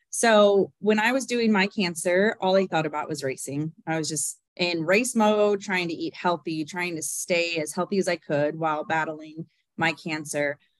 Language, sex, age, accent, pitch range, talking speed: English, female, 30-49, American, 160-200 Hz, 195 wpm